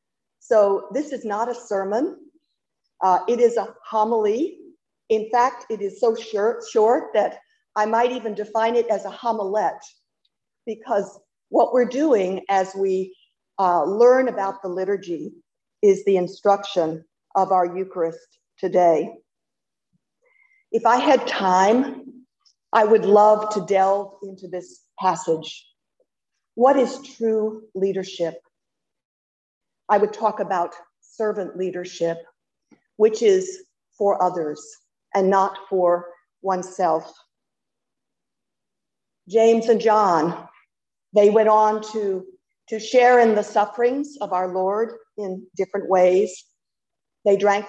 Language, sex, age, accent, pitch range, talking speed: English, female, 50-69, American, 190-235 Hz, 120 wpm